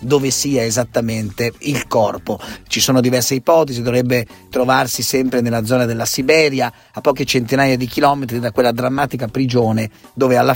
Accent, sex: native, male